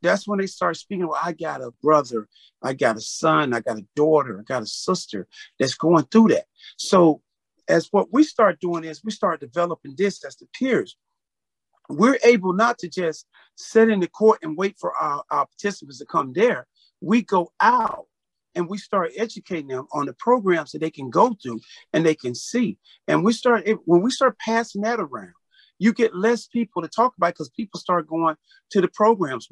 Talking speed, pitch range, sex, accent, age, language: 205 wpm, 160-225 Hz, male, American, 40-59, English